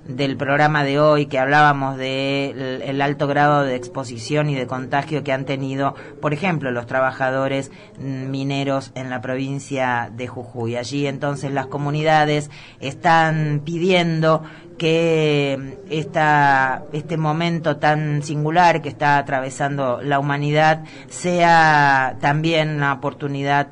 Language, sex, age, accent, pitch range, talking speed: Spanish, female, 30-49, Argentinian, 135-155 Hz, 125 wpm